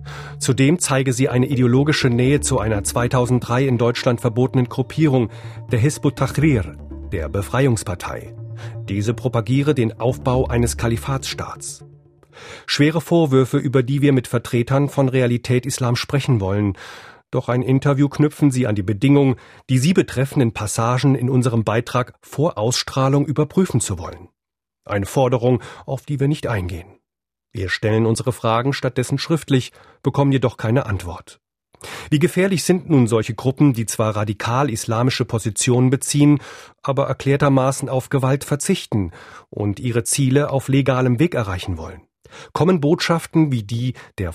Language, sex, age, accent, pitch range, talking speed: German, male, 40-59, German, 110-140 Hz, 140 wpm